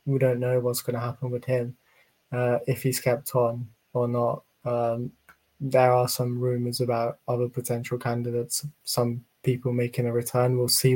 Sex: male